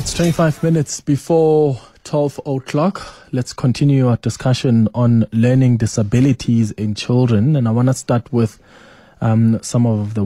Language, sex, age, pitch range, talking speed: English, male, 20-39, 105-125 Hz, 145 wpm